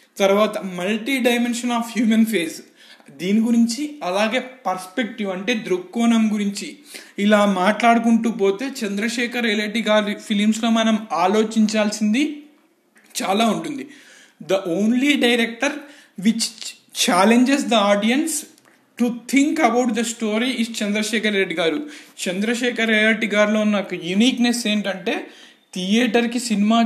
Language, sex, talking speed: Telugu, male, 105 wpm